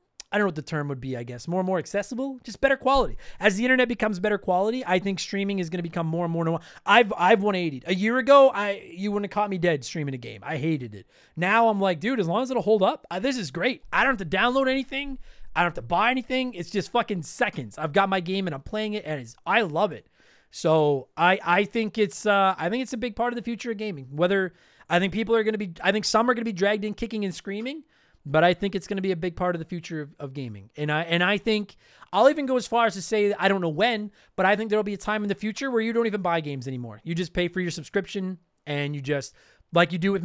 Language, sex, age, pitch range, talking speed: English, male, 30-49, 170-225 Hz, 290 wpm